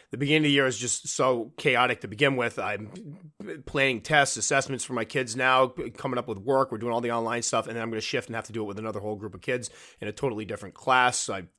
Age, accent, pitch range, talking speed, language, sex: 30-49, American, 110-145 Hz, 270 wpm, English, male